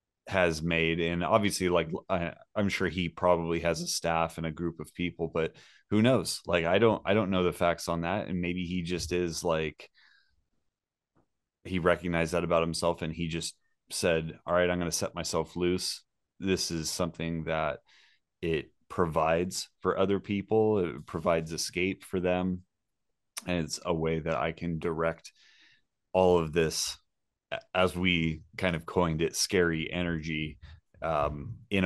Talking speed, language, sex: 165 wpm, English, male